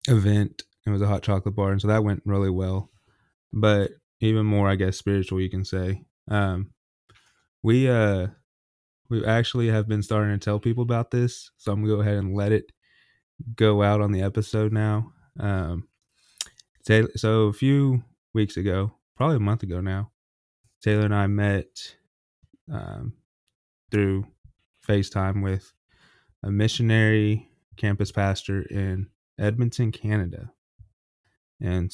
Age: 20-39